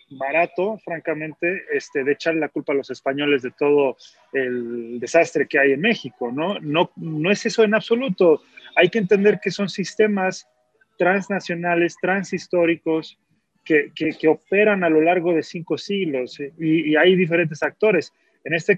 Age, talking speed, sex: 30-49, 165 wpm, male